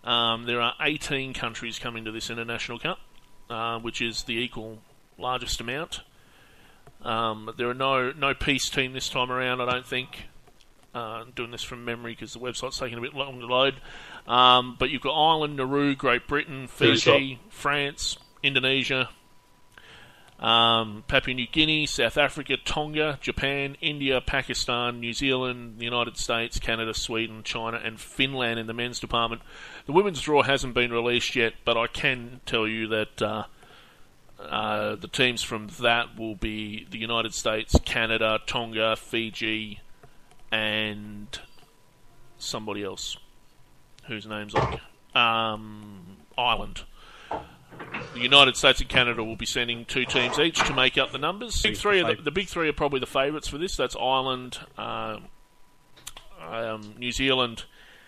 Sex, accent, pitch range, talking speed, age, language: male, Australian, 115-135 Hz, 150 wpm, 30-49, English